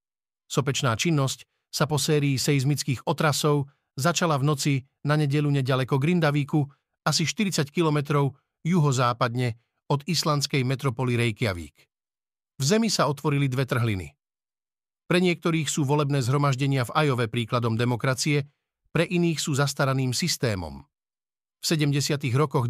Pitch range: 130-160 Hz